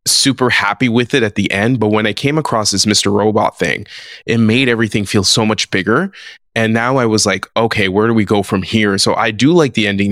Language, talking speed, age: English, 245 wpm, 20-39